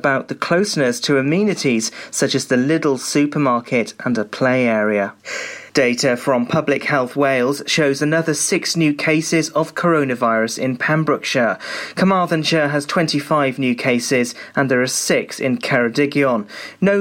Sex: male